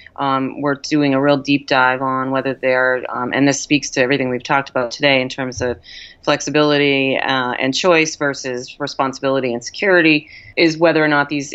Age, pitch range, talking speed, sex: 30-49, 130-145 Hz, 190 wpm, female